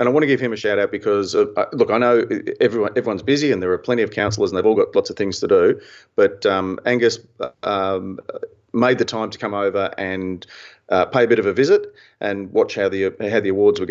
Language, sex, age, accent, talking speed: English, male, 40-59, Australian, 250 wpm